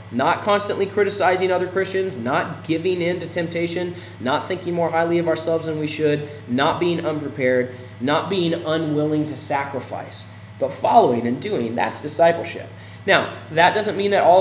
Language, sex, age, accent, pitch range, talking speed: English, male, 20-39, American, 115-170 Hz, 160 wpm